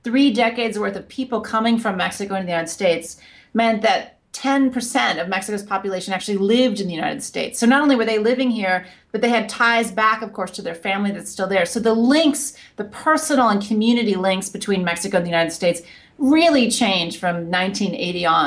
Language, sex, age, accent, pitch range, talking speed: English, female, 30-49, American, 175-230 Hz, 205 wpm